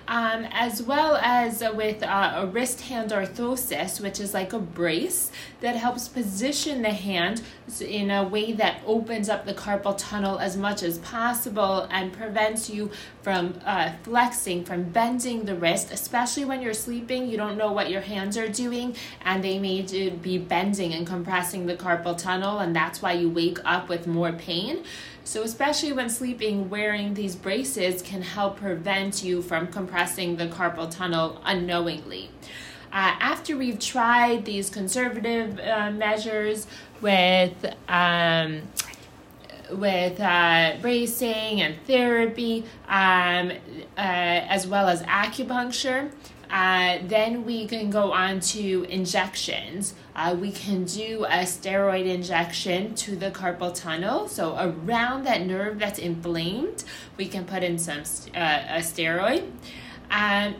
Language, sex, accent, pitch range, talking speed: English, female, American, 180-230 Hz, 145 wpm